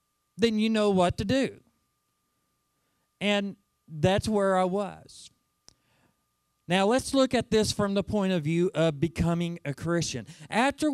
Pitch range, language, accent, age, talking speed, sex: 160-215 Hz, English, American, 40-59, 145 wpm, male